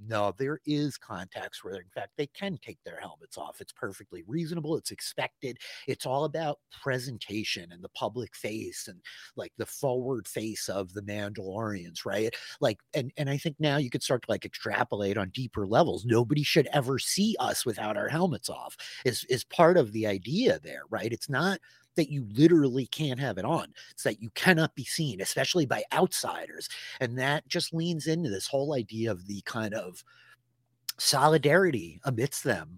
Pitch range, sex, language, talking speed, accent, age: 110-150 Hz, male, English, 185 wpm, American, 30-49